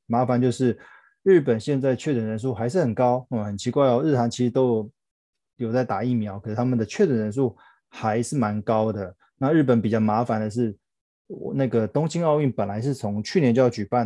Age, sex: 20-39, male